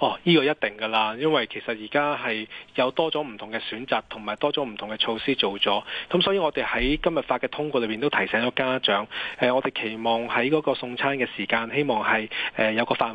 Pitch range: 115-145 Hz